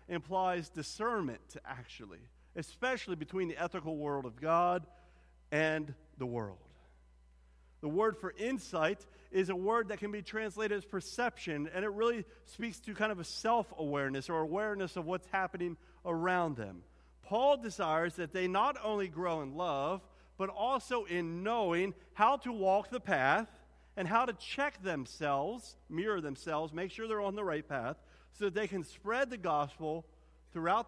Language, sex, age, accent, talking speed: English, male, 40-59, American, 160 wpm